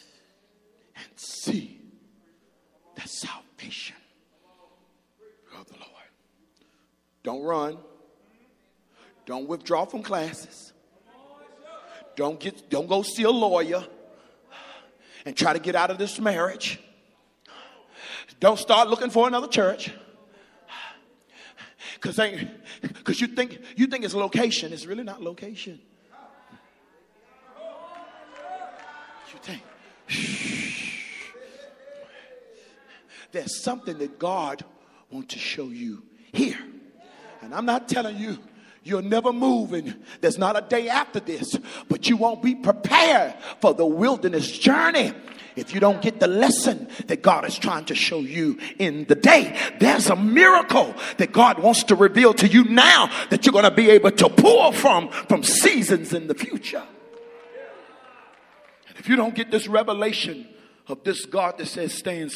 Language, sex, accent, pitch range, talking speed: English, male, American, 200-265 Hz, 130 wpm